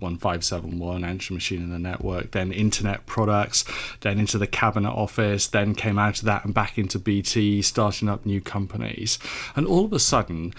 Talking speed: 180 wpm